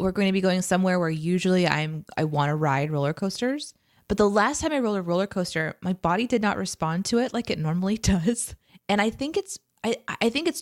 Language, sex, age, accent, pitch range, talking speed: English, female, 20-39, American, 160-210 Hz, 245 wpm